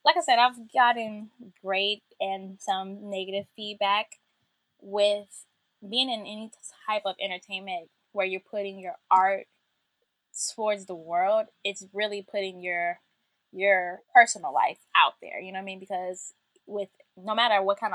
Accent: American